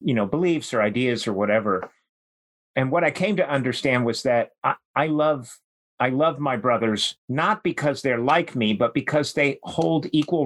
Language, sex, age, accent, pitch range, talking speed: English, male, 50-69, American, 115-150 Hz, 185 wpm